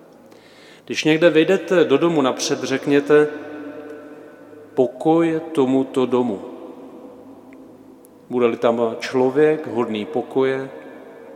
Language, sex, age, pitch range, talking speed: Czech, male, 40-59, 115-140 Hz, 80 wpm